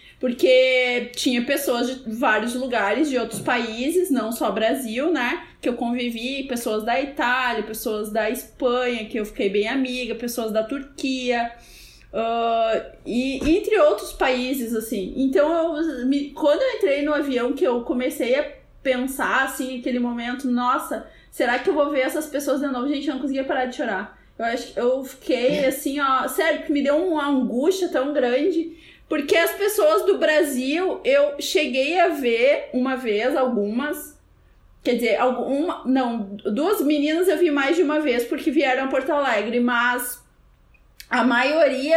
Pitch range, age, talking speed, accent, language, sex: 245-305 Hz, 20-39, 160 wpm, Brazilian, Portuguese, female